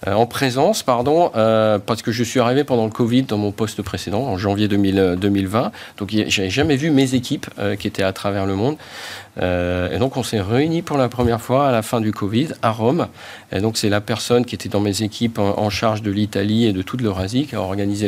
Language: French